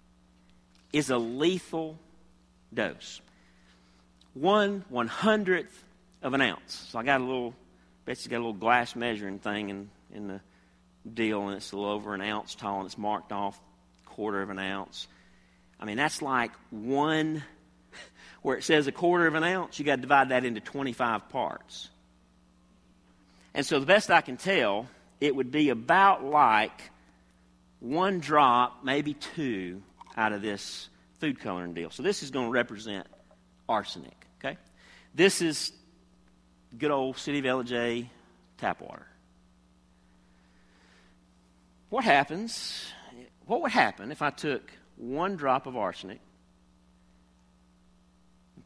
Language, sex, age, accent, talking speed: English, male, 50-69, American, 140 wpm